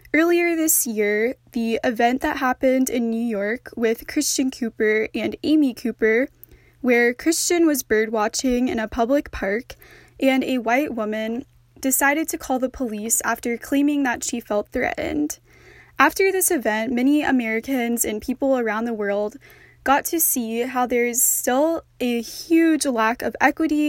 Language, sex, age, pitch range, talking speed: English, female, 10-29, 230-290 Hz, 155 wpm